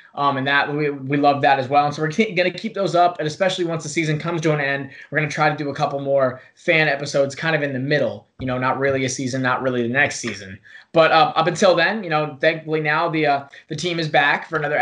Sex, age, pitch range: male, 20-39, 135-160 Hz